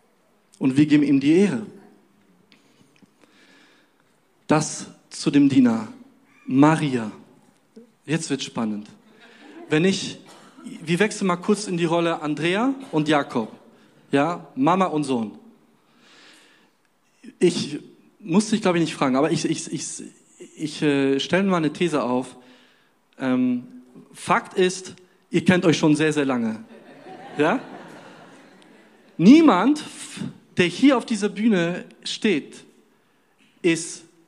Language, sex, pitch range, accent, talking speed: German, male, 150-225 Hz, German, 110 wpm